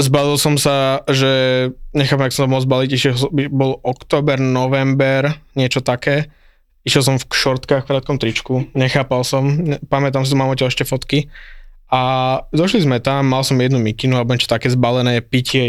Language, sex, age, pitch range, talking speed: Slovak, male, 20-39, 125-135 Hz, 170 wpm